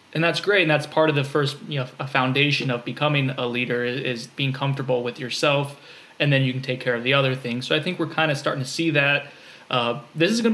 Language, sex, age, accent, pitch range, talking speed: English, male, 20-39, American, 130-150 Hz, 270 wpm